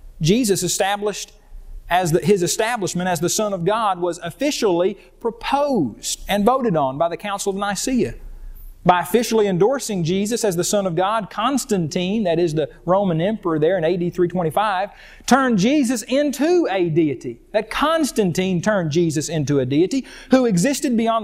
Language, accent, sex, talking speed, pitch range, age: English, American, male, 160 wpm, 165-235 Hz, 40-59